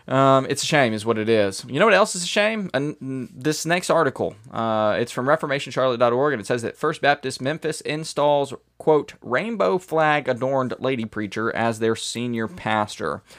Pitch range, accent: 110-145 Hz, American